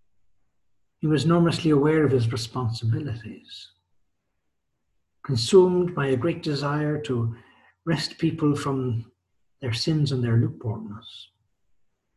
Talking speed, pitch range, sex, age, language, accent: 105 wpm, 110-140 Hz, male, 60-79, English, Irish